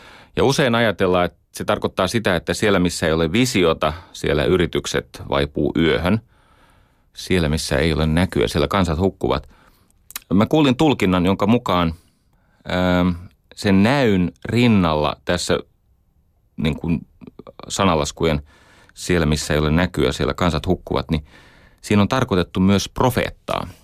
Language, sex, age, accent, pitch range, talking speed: Finnish, male, 30-49, native, 80-95 Hz, 130 wpm